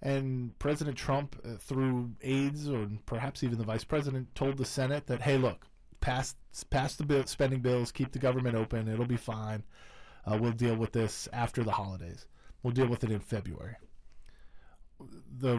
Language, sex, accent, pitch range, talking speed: English, male, American, 110-130 Hz, 175 wpm